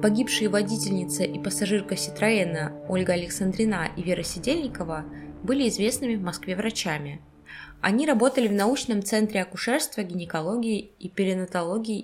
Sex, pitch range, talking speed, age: female, 180-240 Hz, 120 wpm, 20-39